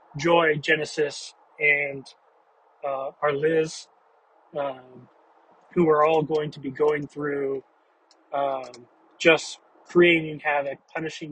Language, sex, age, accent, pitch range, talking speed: English, male, 30-49, American, 145-170 Hz, 105 wpm